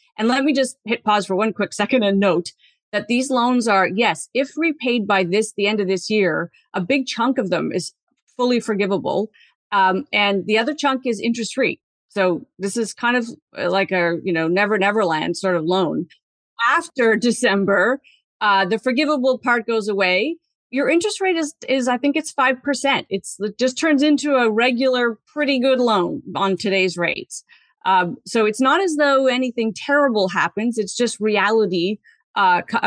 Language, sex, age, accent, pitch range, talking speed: English, female, 40-59, American, 190-260 Hz, 180 wpm